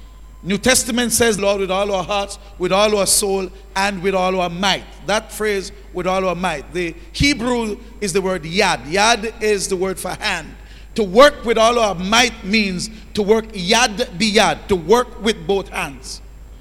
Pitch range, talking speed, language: 180-235 Hz, 185 wpm, English